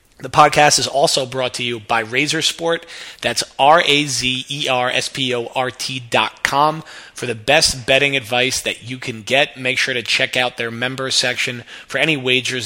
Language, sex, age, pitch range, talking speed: English, male, 20-39, 120-140 Hz, 205 wpm